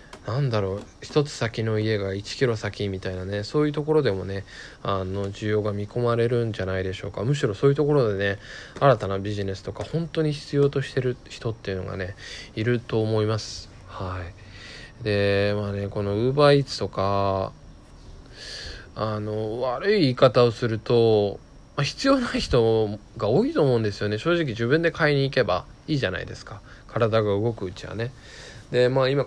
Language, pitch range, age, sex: Japanese, 100-125 Hz, 20-39, male